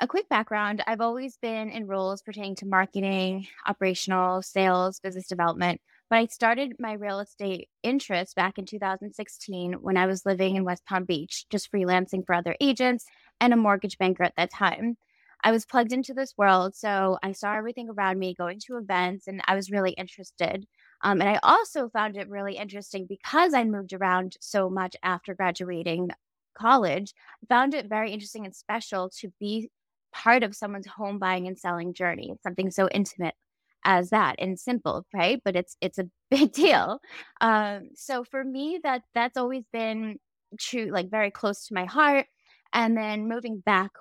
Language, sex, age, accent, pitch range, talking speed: English, female, 10-29, American, 190-230 Hz, 180 wpm